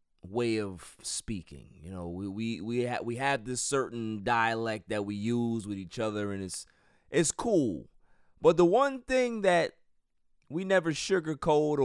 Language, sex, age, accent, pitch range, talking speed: English, male, 30-49, American, 110-175 Hz, 160 wpm